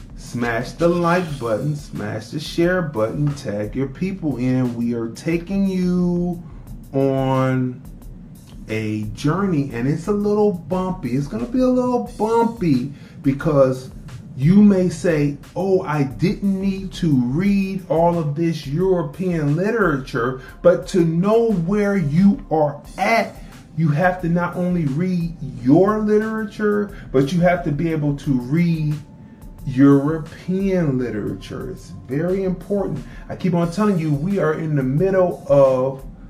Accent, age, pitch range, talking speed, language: American, 30-49, 140-200 Hz, 140 wpm, English